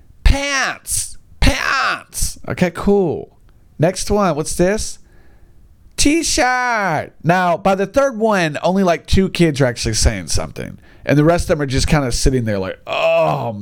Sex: male